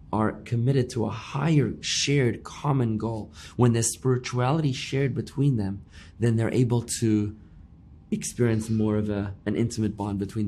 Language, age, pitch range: English, 20-39, 95-120 Hz